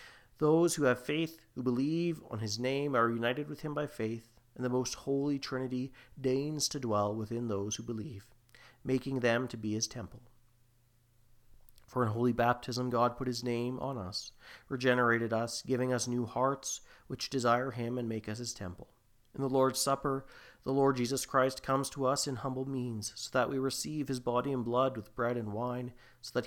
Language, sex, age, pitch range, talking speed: English, male, 40-59, 115-135 Hz, 195 wpm